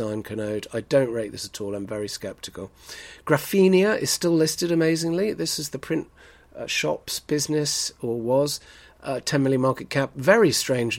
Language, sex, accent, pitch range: English, male, British, 110-155 Hz